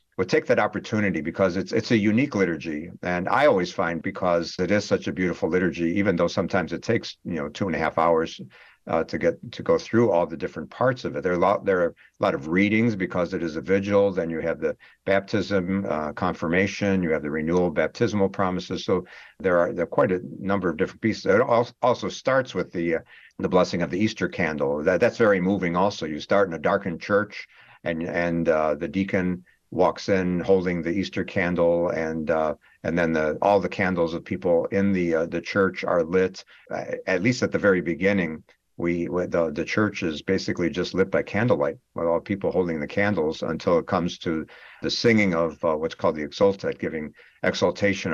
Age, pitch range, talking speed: 60-79, 85-100 Hz, 215 wpm